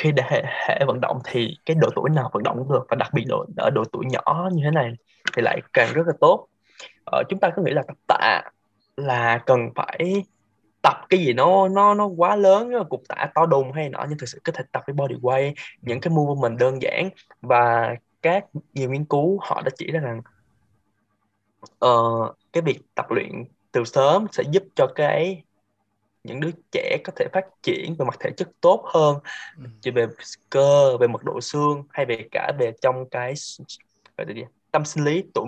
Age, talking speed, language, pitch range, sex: 10-29, 205 wpm, Vietnamese, 120-170 Hz, male